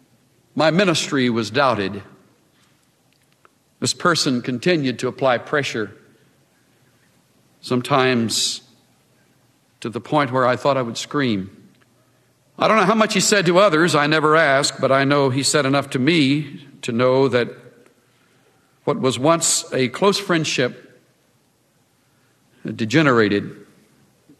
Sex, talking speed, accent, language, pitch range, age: male, 125 wpm, American, English, 115-145 Hz, 60-79